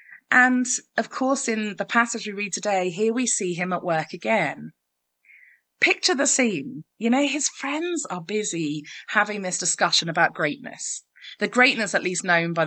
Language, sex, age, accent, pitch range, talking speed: English, female, 30-49, British, 165-225 Hz, 170 wpm